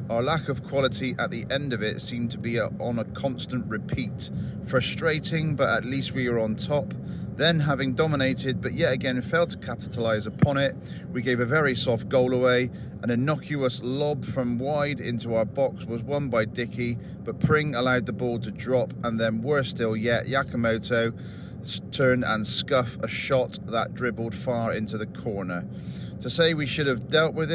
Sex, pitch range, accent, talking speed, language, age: male, 110-140 Hz, British, 185 wpm, English, 40-59